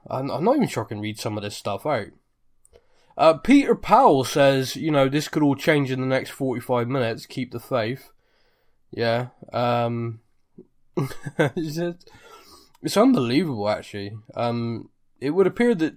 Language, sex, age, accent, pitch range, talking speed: English, male, 20-39, British, 115-145 Hz, 150 wpm